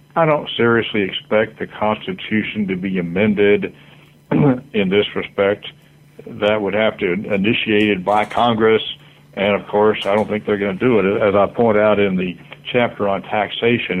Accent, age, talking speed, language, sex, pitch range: American, 60-79, 170 wpm, English, male, 100-120 Hz